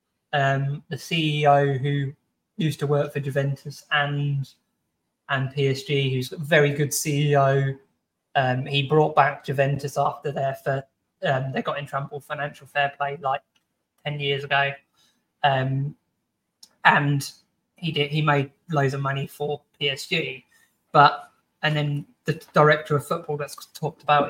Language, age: English, 20-39